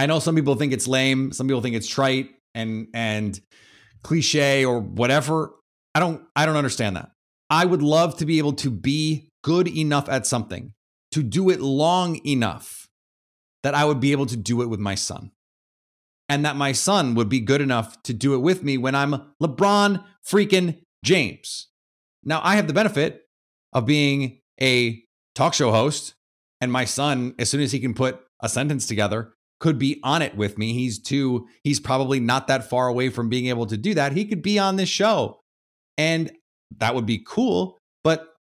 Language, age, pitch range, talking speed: English, 30-49, 110-150 Hz, 190 wpm